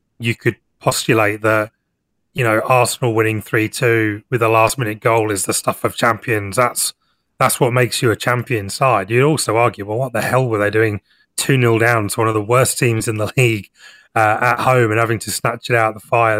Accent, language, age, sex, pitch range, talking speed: British, English, 30-49, male, 105-125 Hz, 215 wpm